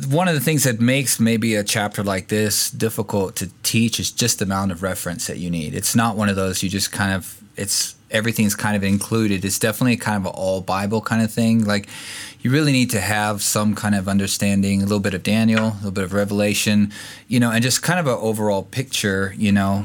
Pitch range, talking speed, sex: 105-125 Hz, 235 wpm, male